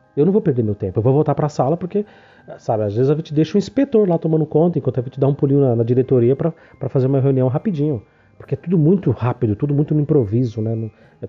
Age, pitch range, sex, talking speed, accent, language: 40-59, 130-200 Hz, male, 265 wpm, Brazilian, Portuguese